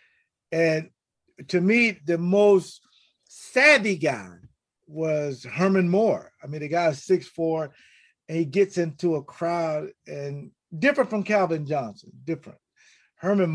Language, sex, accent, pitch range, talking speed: English, male, American, 145-200 Hz, 130 wpm